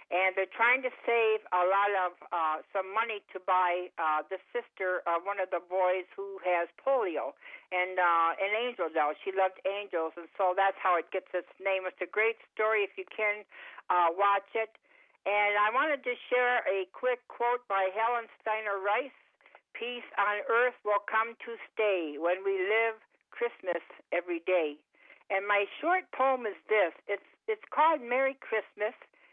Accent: American